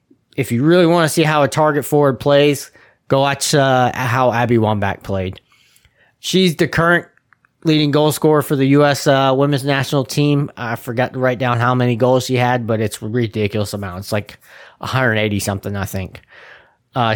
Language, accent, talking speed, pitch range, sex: English, American, 180 wpm, 115-135 Hz, male